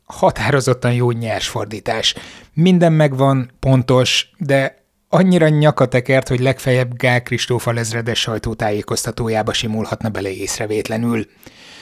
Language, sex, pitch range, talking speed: Hungarian, male, 120-145 Hz, 100 wpm